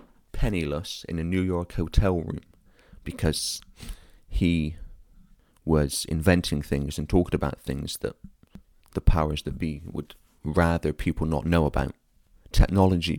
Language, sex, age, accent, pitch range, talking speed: English, male, 30-49, British, 75-90 Hz, 125 wpm